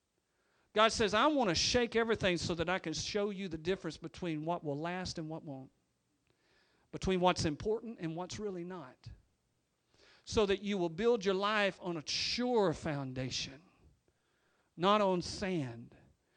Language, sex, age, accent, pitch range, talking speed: English, male, 50-69, American, 165-225 Hz, 160 wpm